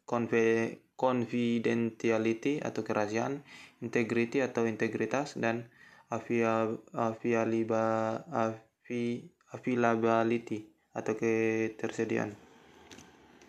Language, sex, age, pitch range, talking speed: Indonesian, male, 20-39, 110-120 Hz, 45 wpm